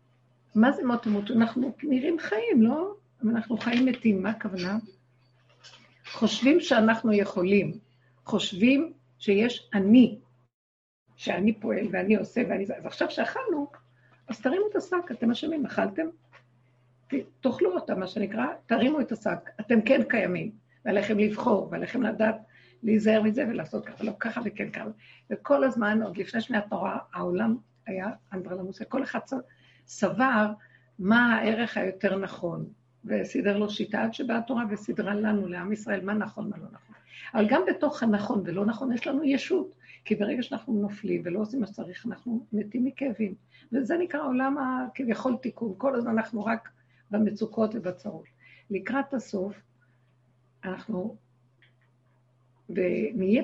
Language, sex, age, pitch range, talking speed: Hebrew, female, 60-79, 190-245 Hz, 135 wpm